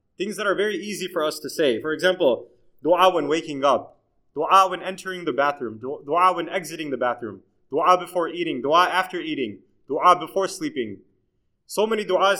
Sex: male